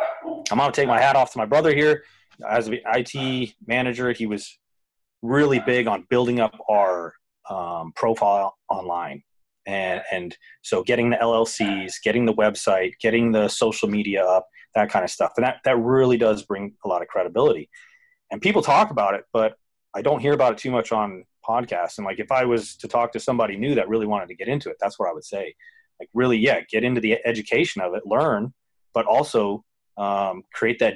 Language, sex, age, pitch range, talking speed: English, male, 30-49, 105-130 Hz, 205 wpm